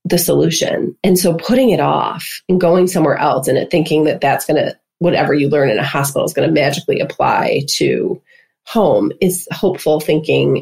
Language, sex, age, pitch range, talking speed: English, female, 30-49, 155-200 Hz, 190 wpm